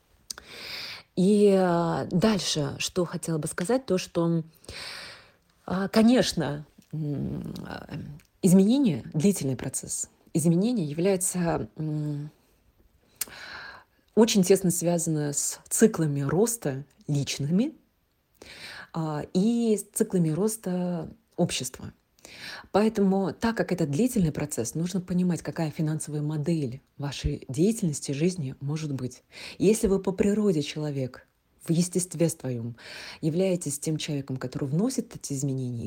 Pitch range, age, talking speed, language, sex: 145-185 Hz, 30-49, 95 wpm, Russian, female